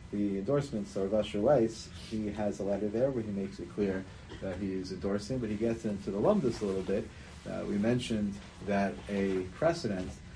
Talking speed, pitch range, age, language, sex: 205 wpm, 95-115 Hz, 30-49, English, male